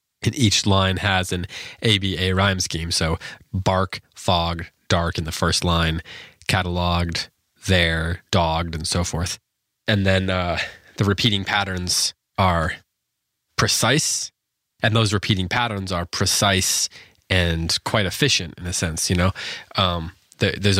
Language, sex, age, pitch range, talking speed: English, male, 20-39, 90-105 Hz, 135 wpm